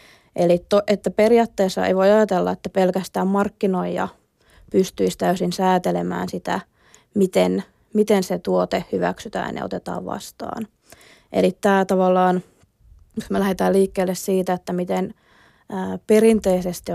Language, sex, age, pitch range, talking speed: Finnish, female, 20-39, 175-195 Hz, 120 wpm